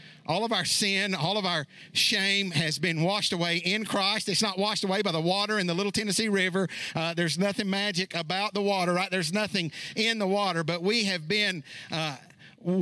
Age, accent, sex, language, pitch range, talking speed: 50-69, American, male, English, 145-190 Hz, 205 wpm